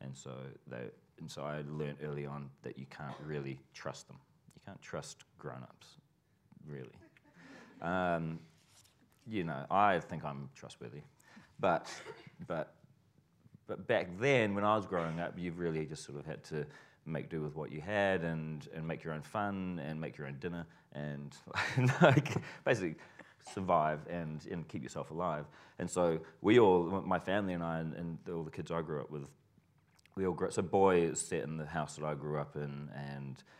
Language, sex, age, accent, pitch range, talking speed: English, male, 30-49, Australian, 70-85 Hz, 190 wpm